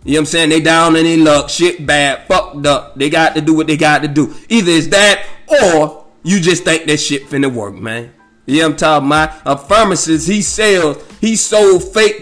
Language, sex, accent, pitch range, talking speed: English, male, American, 160-255 Hz, 235 wpm